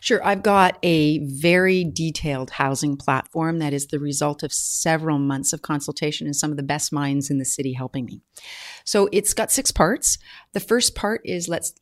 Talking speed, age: 195 wpm, 40-59